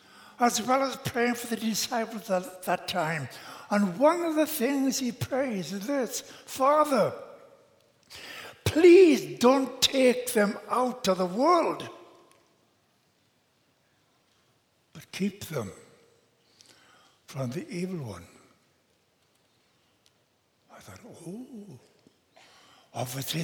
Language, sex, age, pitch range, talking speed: English, male, 60-79, 150-240 Hz, 100 wpm